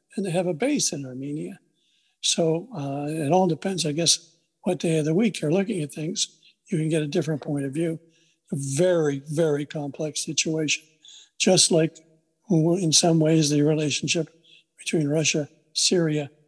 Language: English